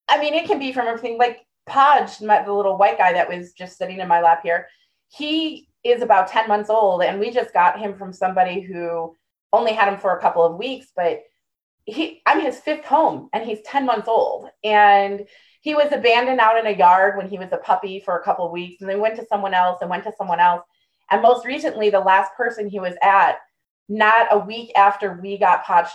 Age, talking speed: 30-49, 235 wpm